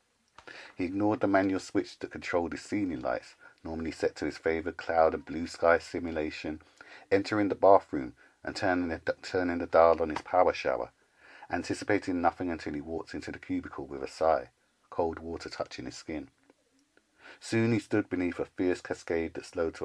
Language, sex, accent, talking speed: English, male, British, 180 wpm